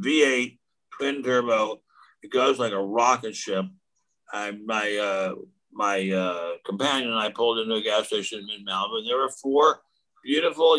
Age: 60-79